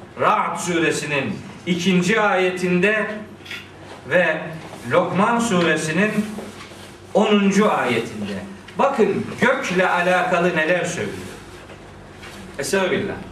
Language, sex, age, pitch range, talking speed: Turkish, male, 50-69, 185-245 Hz, 70 wpm